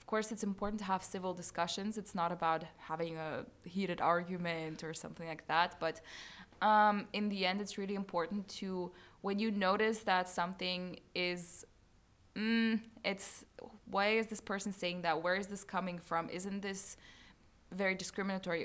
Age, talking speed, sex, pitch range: 20-39, 165 wpm, female, 175-205 Hz